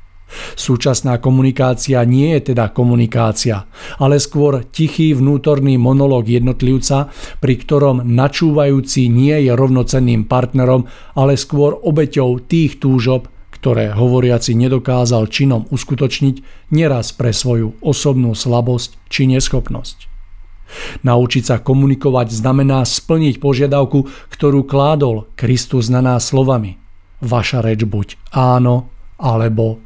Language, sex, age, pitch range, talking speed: Czech, male, 50-69, 115-135 Hz, 105 wpm